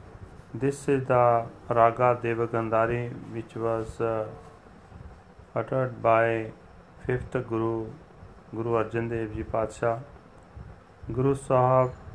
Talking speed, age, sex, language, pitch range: 95 wpm, 40-59, male, Punjabi, 110-135 Hz